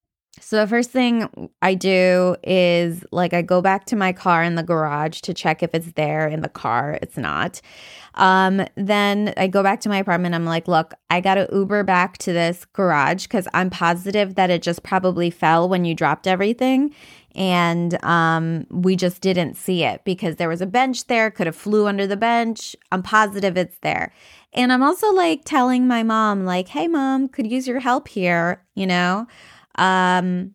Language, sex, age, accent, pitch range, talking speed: English, female, 20-39, American, 175-225 Hz, 195 wpm